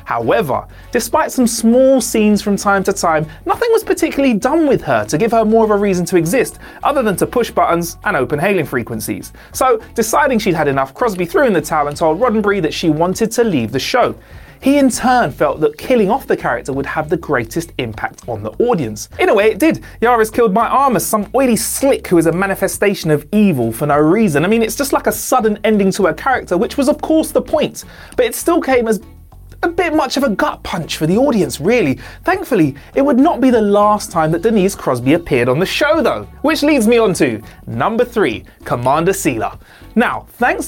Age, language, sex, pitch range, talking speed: 30-49, English, male, 170-270 Hz, 225 wpm